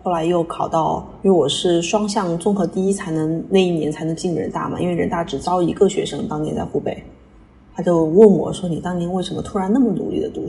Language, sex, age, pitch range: Chinese, female, 30-49, 175-225 Hz